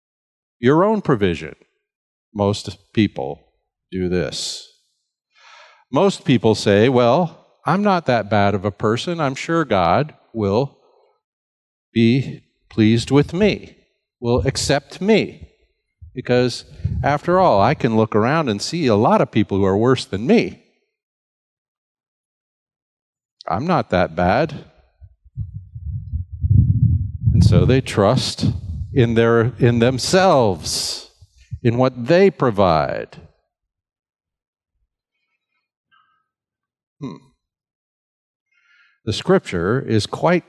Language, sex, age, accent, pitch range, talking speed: English, male, 50-69, American, 100-145 Hz, 100 wpm